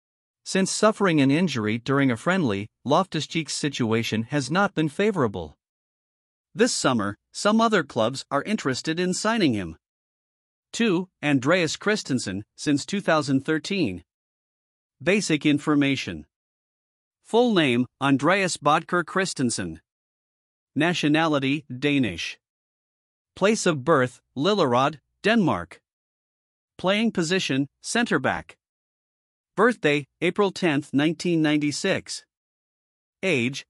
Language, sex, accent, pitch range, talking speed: English, male, American, 135-185 Hz, 90 wpm